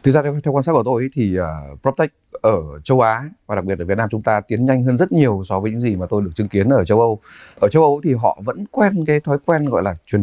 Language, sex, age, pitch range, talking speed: Vietnamese, male, 20-39, 105-145 Hz, 295 wpm